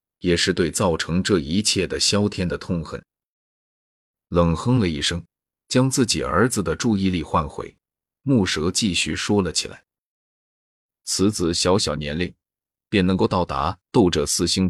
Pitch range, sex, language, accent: 80-100 Hz, male, Chinese, native